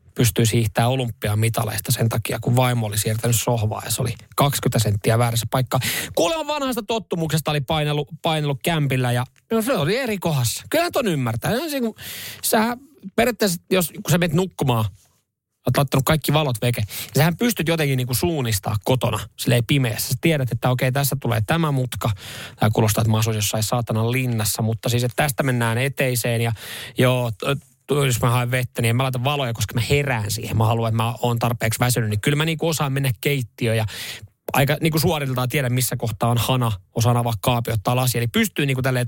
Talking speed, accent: 190 wpm, native